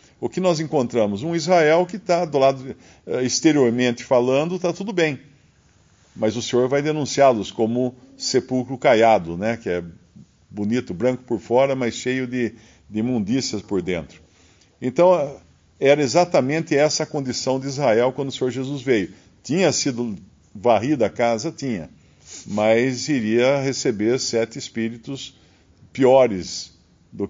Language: Portuguese